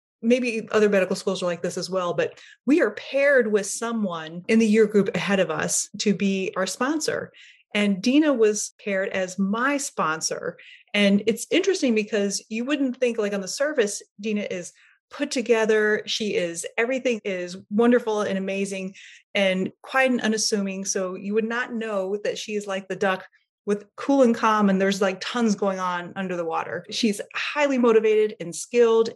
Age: 30-49